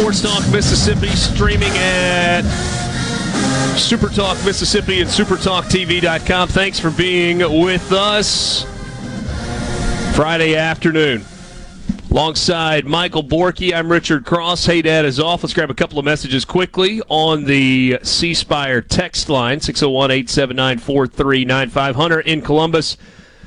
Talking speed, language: 110 wpm, English